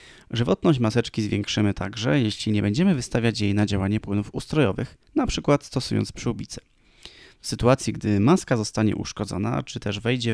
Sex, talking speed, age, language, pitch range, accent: male, 145 wpm, 20-39, Polish, 105-135 Hz, native